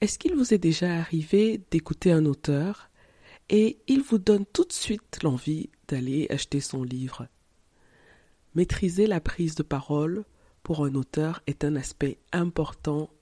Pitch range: 135-170 Hz